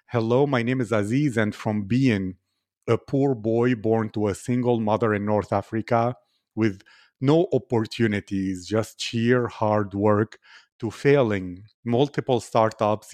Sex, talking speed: male, 135 wpm